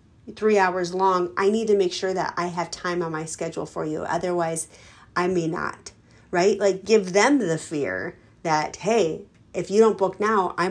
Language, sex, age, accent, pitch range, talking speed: English, female, 30-49, American, 175-215 Hz, 195 wpm